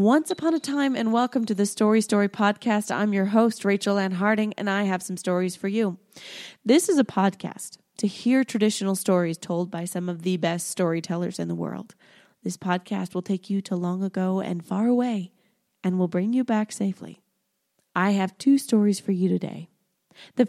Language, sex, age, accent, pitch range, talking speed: English, female, 20-39, American, 185-240 Hz, 195 wpm